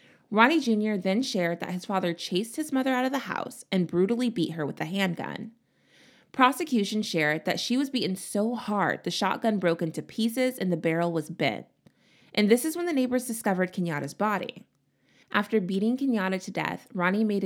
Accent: American